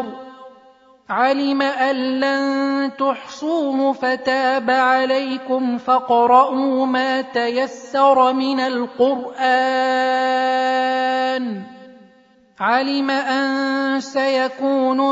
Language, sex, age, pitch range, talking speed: Arabic, male, 30-49, 255-265 Hz, 55 wpm